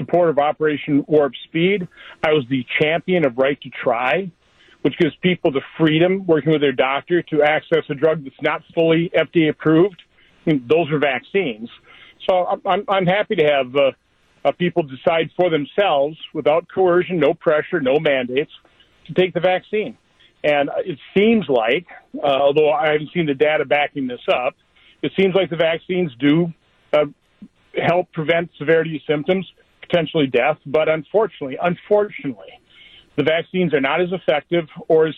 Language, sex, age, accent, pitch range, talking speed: English, male, 50-69, American, 150-180 Hz, 160 wpm